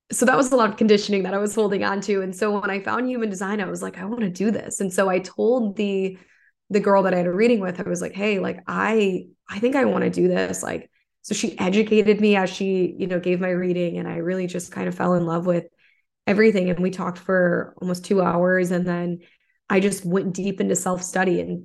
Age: 20-39